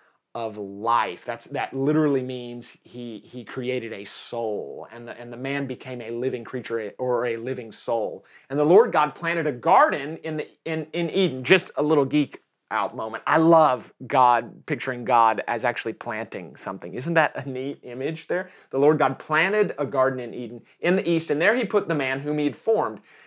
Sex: male